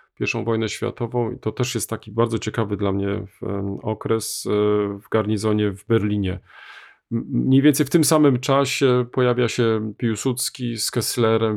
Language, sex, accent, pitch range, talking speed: Polish, male, native, 100-125 Hz, 145 wpm